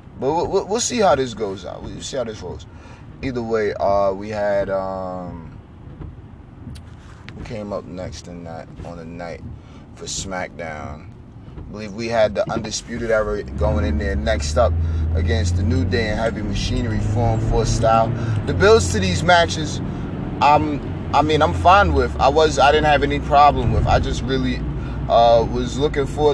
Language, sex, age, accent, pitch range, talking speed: English, male, 30-49, American, 90-120 Hz, 175 wpm